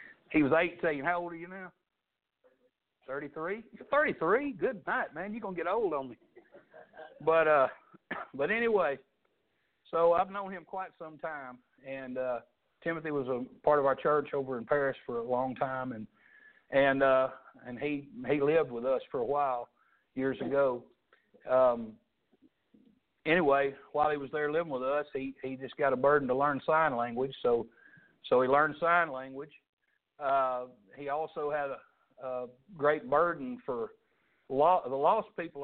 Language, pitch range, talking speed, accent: English, 135-190 Hz, 165 wpm, American